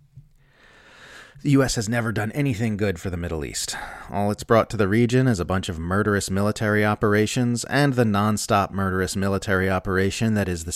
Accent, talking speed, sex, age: American, 185 wpm, male, 30-49